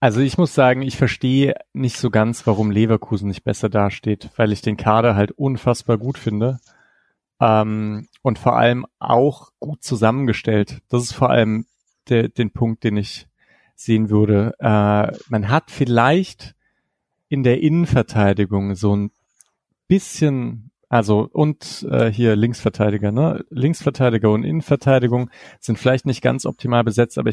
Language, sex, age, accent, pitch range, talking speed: German, male, 40-59, German, 110-135 Hz, 145 wpm